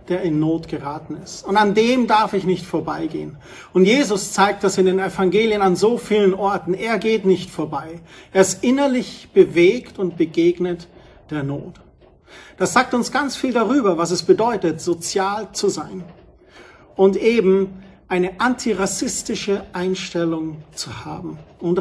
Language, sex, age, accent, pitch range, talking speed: German, male, 40-59, German, 170-225 Hz, 150 wpm